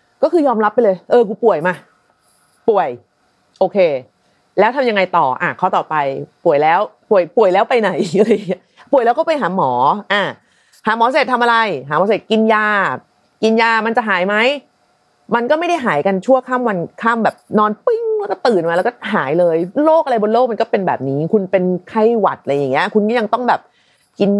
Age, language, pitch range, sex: 30-49, Thai, 185-245 Hz, female